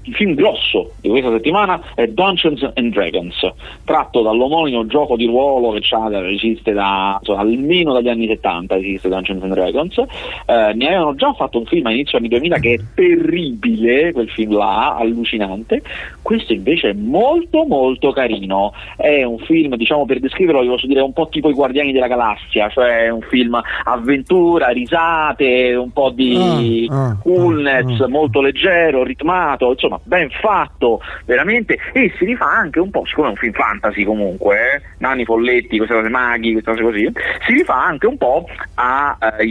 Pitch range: 110-155 Hz